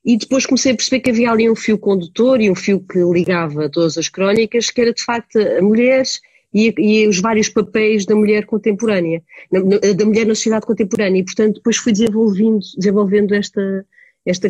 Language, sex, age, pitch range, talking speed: Portuguese, female, 30-49, 180-230 Hz, 205 wpm